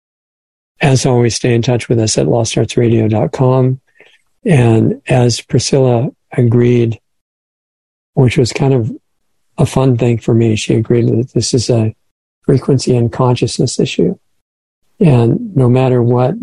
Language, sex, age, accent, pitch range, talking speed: English, male, 50-69, American, 115-130 Hz, 130 wpm